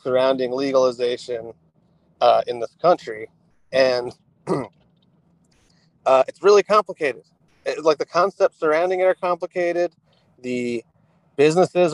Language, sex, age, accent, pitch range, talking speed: English, male, 30-49, American, 125-170 Hz, 105 wpm